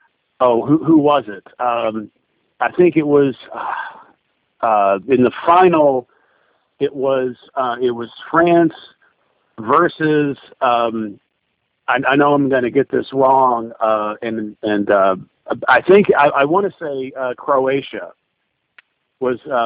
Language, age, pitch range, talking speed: English, 50-69, 125-165 Hz, 135 wpm